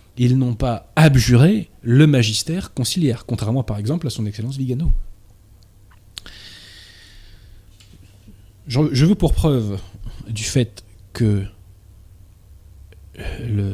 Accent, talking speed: French, 95 wpm